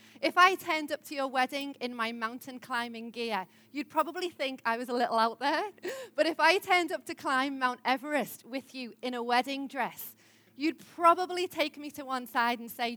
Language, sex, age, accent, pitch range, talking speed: English, female, 30-49, British, 255-315 Hz, 210 wpm